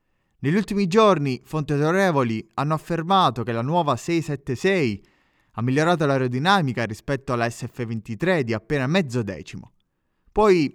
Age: 20-39